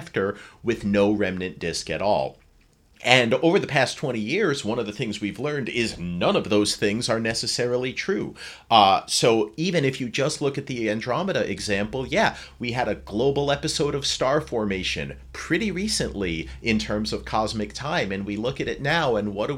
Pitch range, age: 100-130 Hz, 40-59